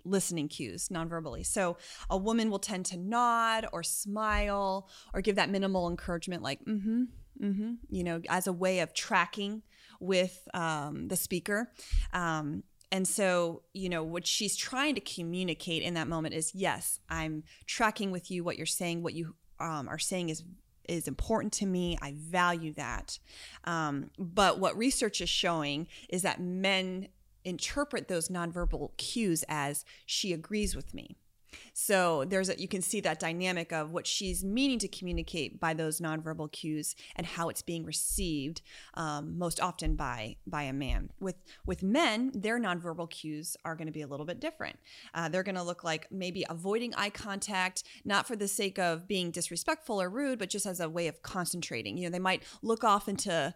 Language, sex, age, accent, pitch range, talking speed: English, female, 30-49, American, 165-200 Hz, 185 wpm